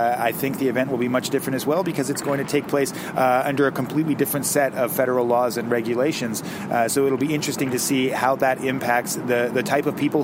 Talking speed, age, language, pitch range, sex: 245 wpm, 30-49, English, 115-135 Hz, male